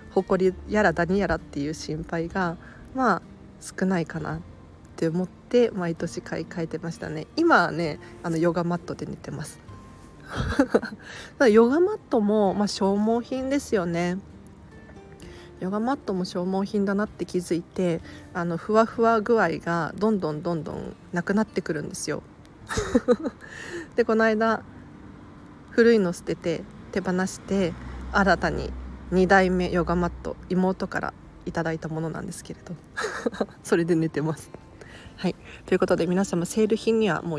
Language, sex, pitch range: Japanese, female, 170-220 Hz